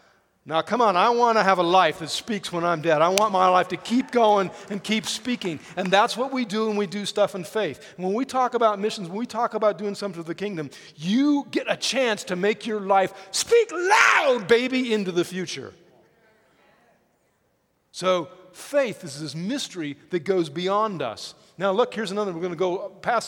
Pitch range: 170-230 Hz